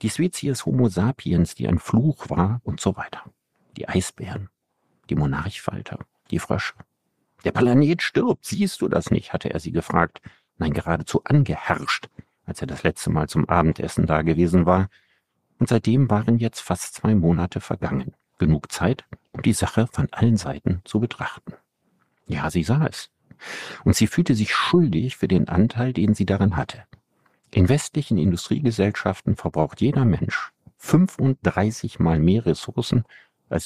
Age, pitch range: 50-69, 85-130 Hz